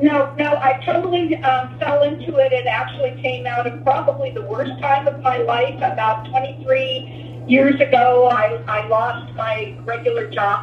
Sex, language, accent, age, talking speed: female, English, American, 50-69, 170 wpm